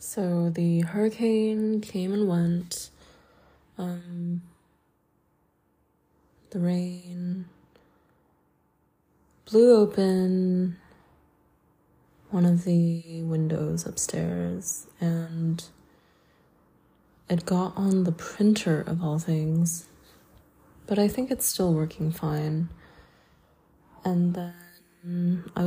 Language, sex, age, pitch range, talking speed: English, female, 20-39, 165-185 Hz, 80 wpm